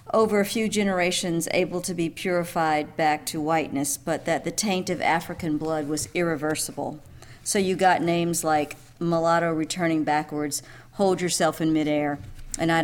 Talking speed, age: 160 wpm, 50-69